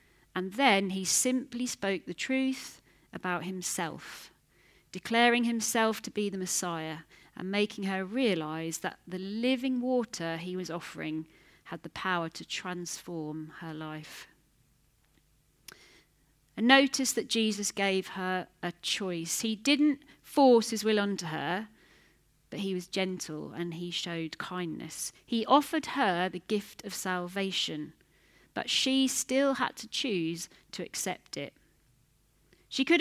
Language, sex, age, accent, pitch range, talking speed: English, female, 40-59, British, 175-255 Hz, 135 wpm